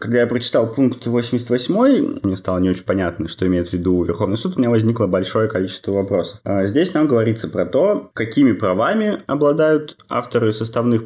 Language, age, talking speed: Russian, 20-39, 175 wpm